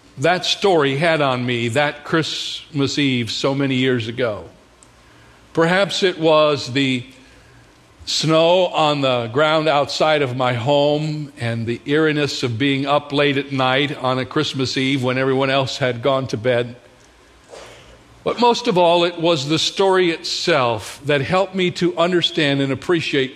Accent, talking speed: American, 155 wpm